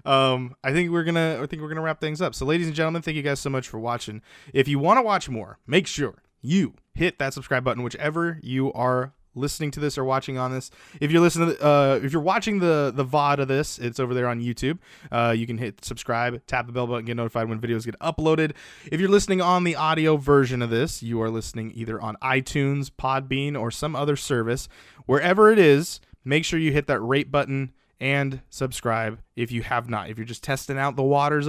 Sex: male